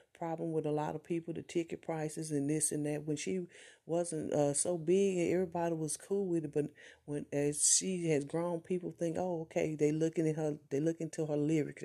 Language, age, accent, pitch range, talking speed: English, 40-59, American, 150-170 Hz, 225 wpm